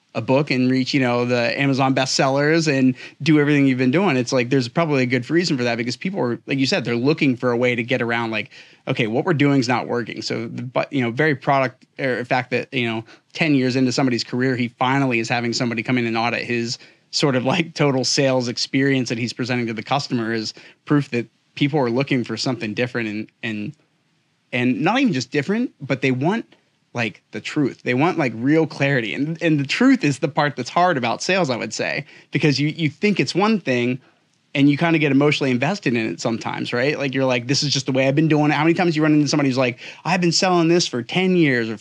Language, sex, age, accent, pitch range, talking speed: English, male, 30-49, American, 125-160 Hz, 245 wpm